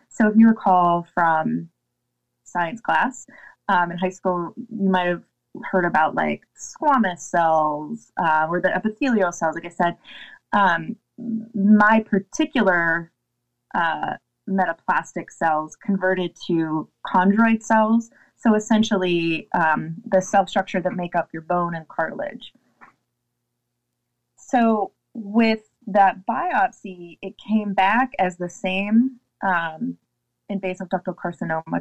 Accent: American